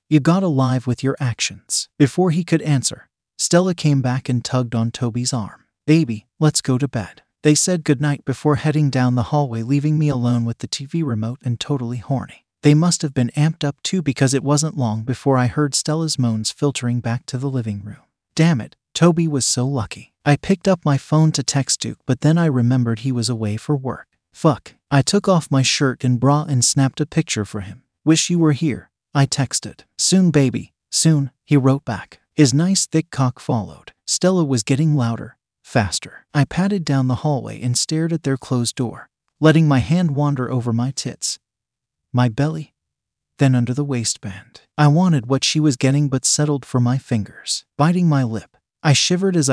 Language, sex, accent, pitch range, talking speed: English, male, American, 125-155 Hz, 195 wpm